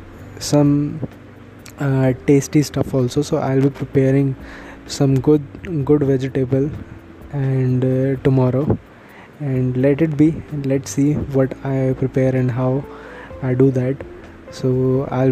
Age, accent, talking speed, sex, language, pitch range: 20-39, Indian, 125 wpm, male, English, 130-140 Hz